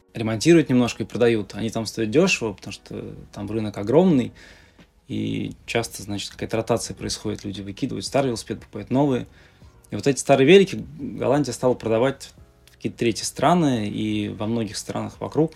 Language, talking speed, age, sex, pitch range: Russian, 160 wpm, 20-39, male, 100-130 Hz